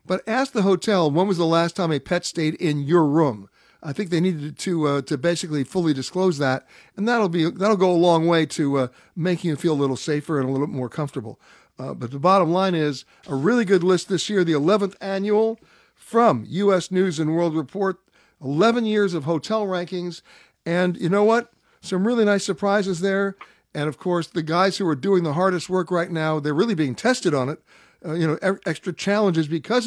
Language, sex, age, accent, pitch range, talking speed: English, male, 60-79, American, 150-195 Hz, 215 wpm